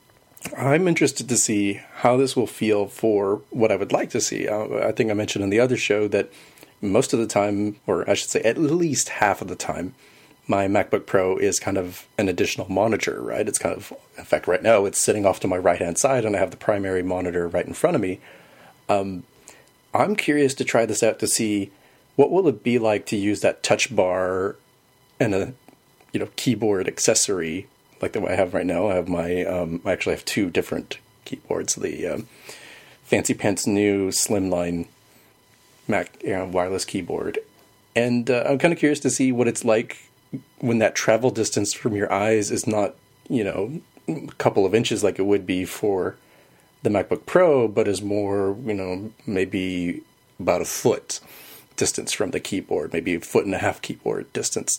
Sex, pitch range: male, 95-125 Hz